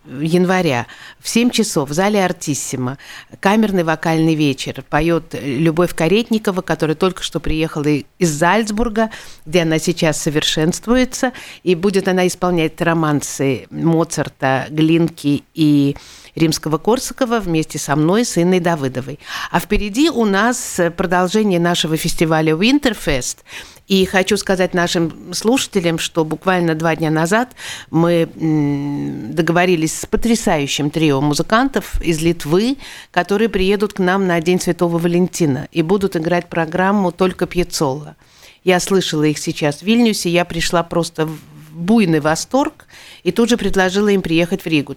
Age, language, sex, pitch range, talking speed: 50-69, Russian, female, 155-195 Hz, 130 wpm